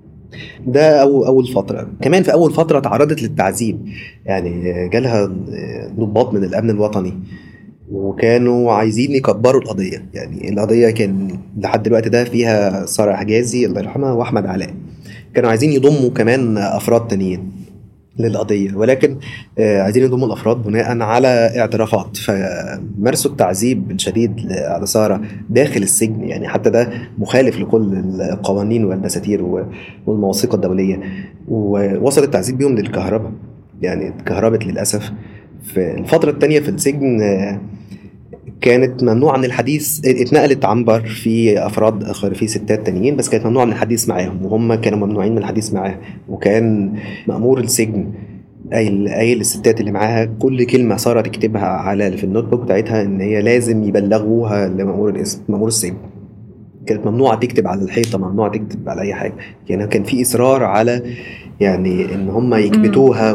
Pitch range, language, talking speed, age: 100-120 Hz, Arabic, 135 wpm, 20-39